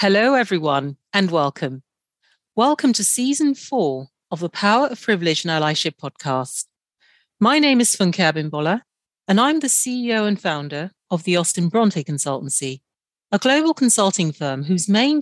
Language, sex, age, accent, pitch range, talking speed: English, female, 40-59, British, 155-225 Hz, 150 wpm